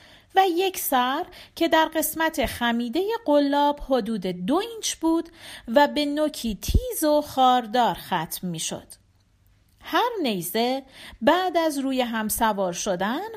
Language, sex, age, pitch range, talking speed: Persian, female, 40-59, 230-320 Hz, 125 wpm